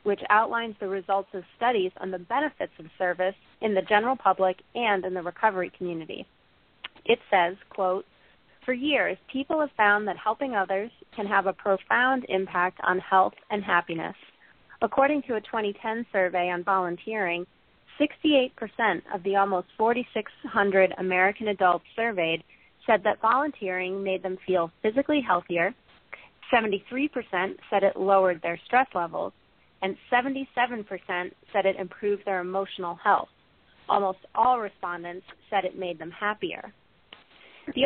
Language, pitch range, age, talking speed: English, 185-230 Hz, 30-49, 140 wpm